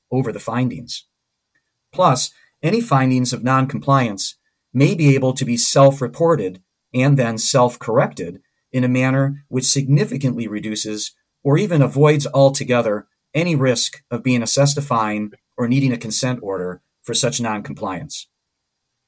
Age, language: 40-59, English